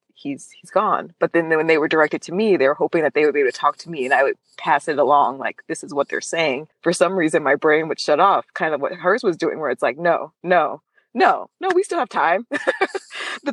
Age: 20-39